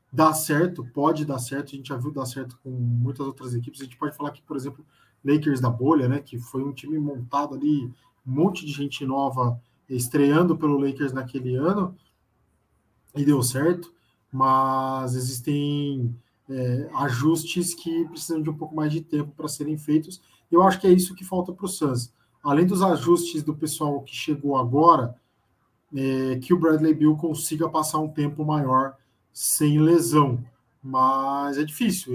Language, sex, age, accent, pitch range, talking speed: Portuguese, male, 20-39, Brazilian, 130-165 Hz, 175 wpm